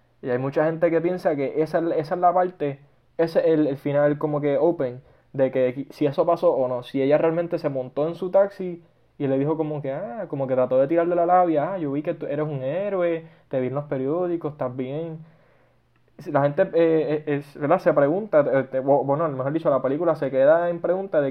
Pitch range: 130-165 Hz